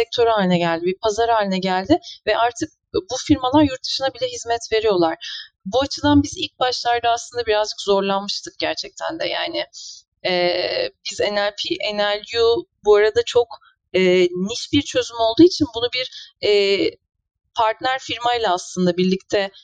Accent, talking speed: native, 145 wpm